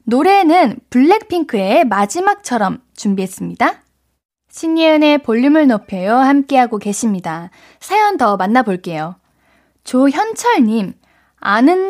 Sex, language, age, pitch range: female, Korean, 20-39, 220-325 Hz